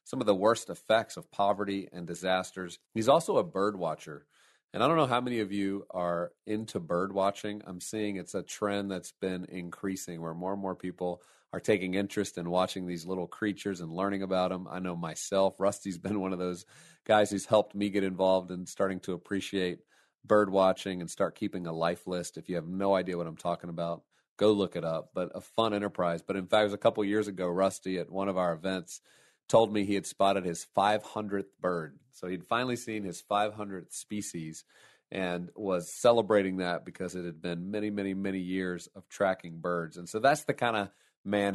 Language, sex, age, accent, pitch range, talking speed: English, male, 40-59, American, 90-105 Hz, 210 wpm